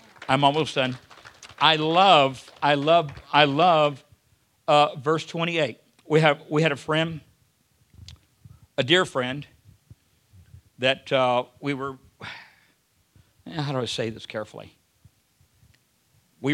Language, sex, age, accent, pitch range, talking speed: English, male, 50-69, American, 130-150 Hz, 115 wpm